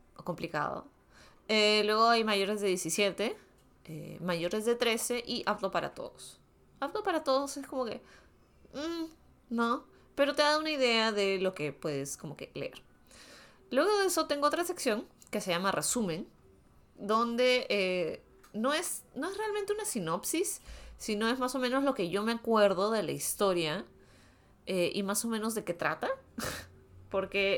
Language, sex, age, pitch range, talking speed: Spanish, female, 20-39, 180-245 Hz, 165 wpm